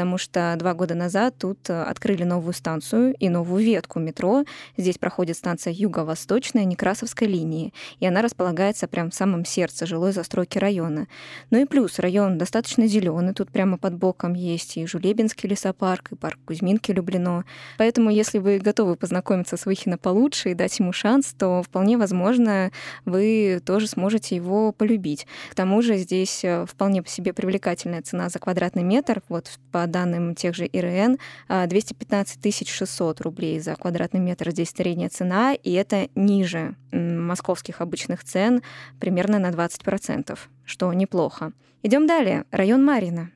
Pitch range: 175-215 Hz